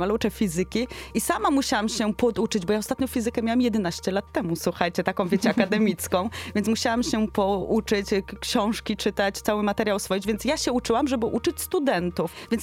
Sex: female